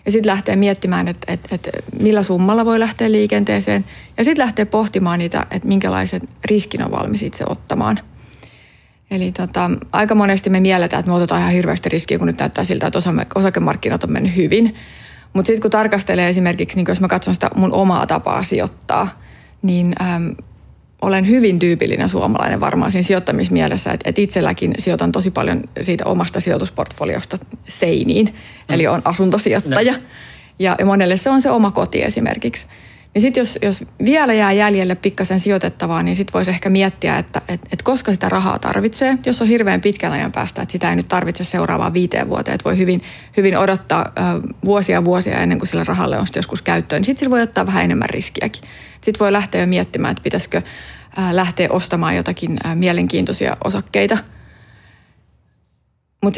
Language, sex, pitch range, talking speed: Finnish, female, 175-210 Hz, 165 wpm